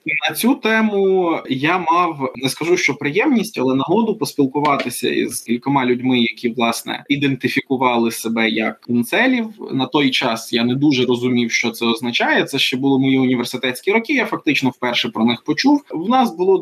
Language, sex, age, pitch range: Ukrainian, male, 20-39, 125-195 Hz